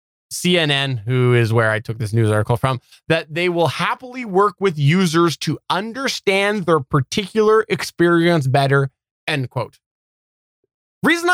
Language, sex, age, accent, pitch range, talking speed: English, male, 20-39, American, 140-180 Hz, 140 wpm